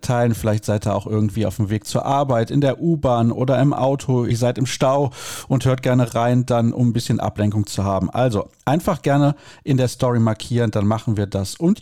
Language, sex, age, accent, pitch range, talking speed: German, male, 40-59, German, 110-145 Hz, 225 wpm